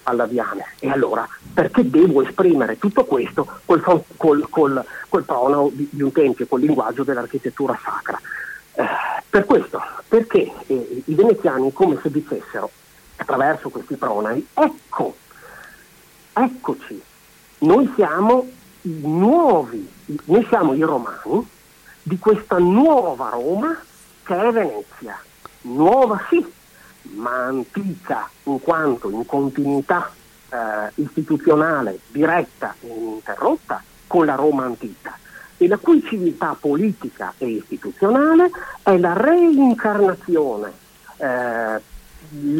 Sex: male